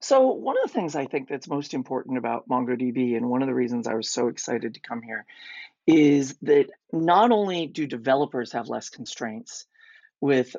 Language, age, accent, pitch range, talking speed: English, 40-59, American, 125-170 Hz, 195 wpm